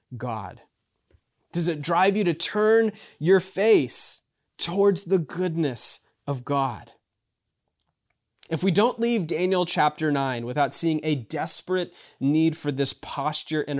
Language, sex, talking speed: English, male, 130 wpm